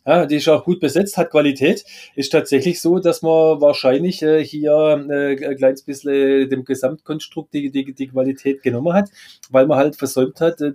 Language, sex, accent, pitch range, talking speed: German, male, German, 130-150 Hz, 190 wpm